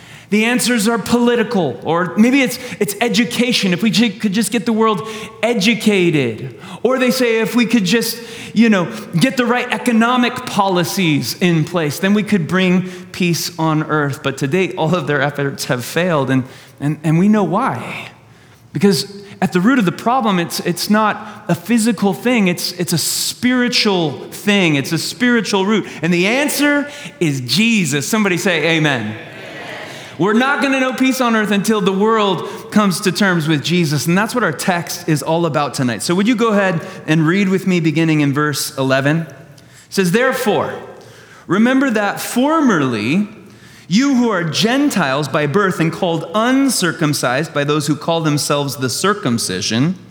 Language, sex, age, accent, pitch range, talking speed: English, male, 30-49, American, 150-220 Hz, 175 wpm